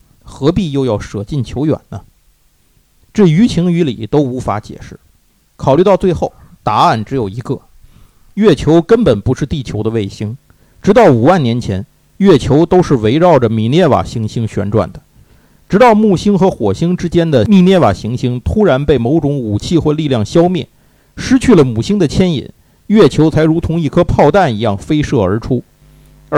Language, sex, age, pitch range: Chinese, male, 50-69, 115-180 Hz